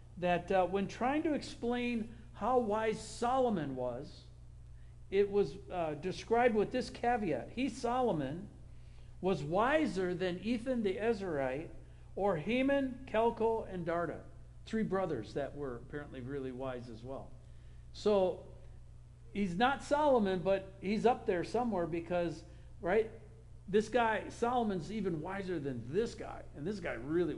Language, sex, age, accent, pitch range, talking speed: English, male, 60-79, American, 145-230 Hz, 135 wpm